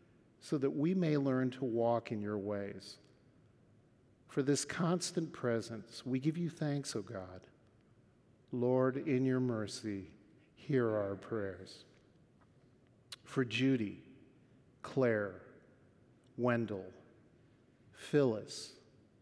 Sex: male